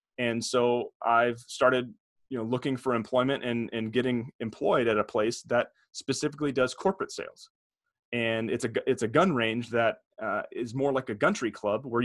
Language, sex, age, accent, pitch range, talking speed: English, male, 30-49, American, 115-140 Hz, 185 wpm